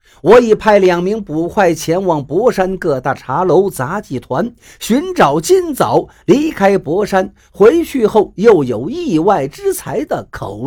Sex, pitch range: male, 135-215 Hz